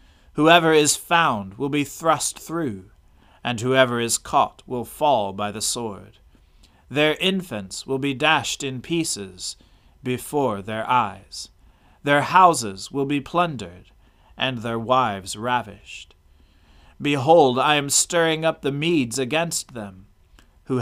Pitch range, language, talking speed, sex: 100-145 Hz, English, 130 wpm, male